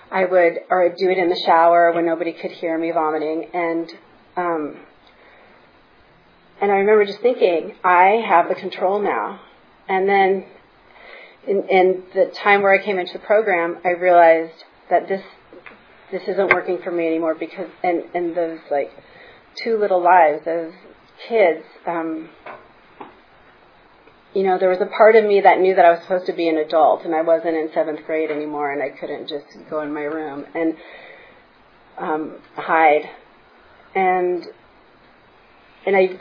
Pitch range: 165-195 Hz